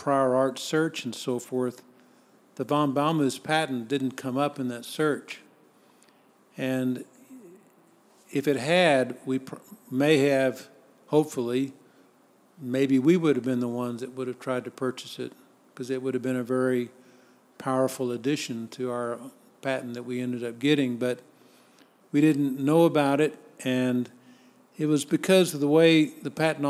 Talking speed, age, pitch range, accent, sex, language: 155 wpm, 50-69, 125-140 Hz, American, male, English